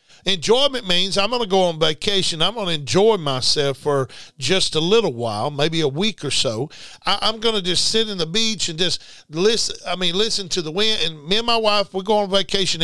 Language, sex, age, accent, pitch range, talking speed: English, male, 50-69, American, 175-220 Hz, 235 wpm